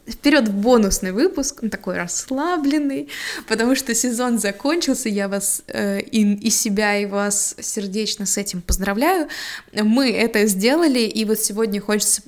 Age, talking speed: 20-39, 140 wpm